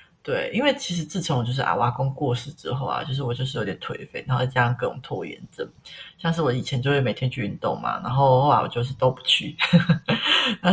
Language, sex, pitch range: Chinese, female, 130-165 Hz